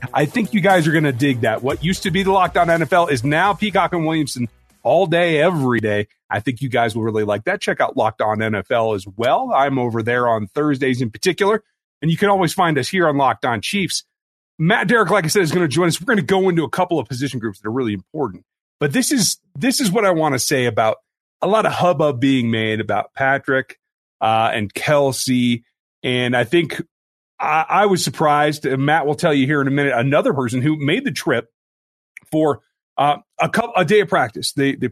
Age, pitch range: 30-49, 120-170 Hz